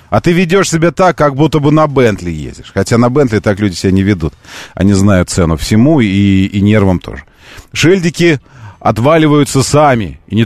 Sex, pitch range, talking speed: male, 90-135 Hz, 185 wpm